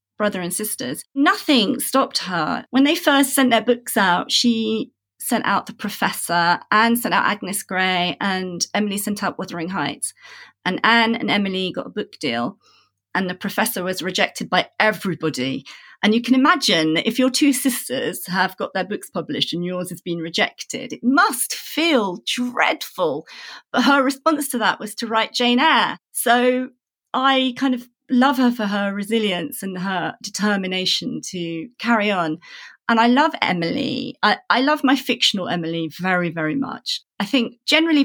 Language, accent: English, British